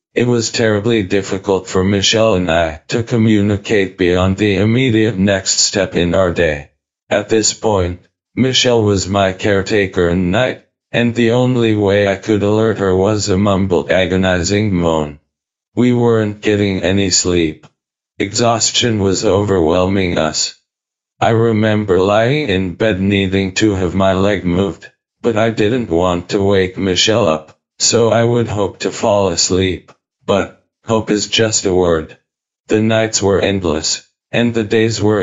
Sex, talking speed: male, 150 wpm